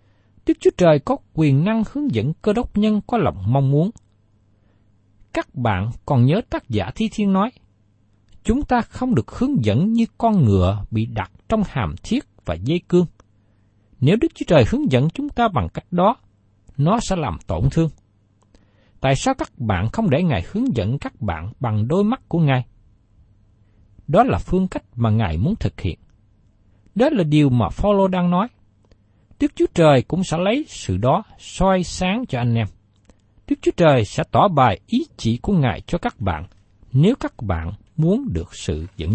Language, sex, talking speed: Vietnamese, male, 185 wpm